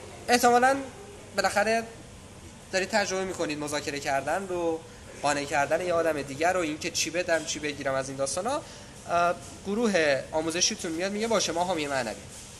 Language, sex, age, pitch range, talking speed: Persian, male, 20-39, 145-210 Hz, 150 wpm